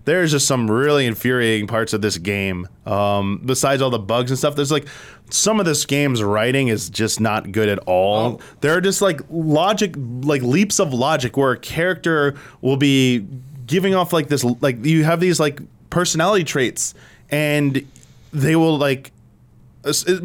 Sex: male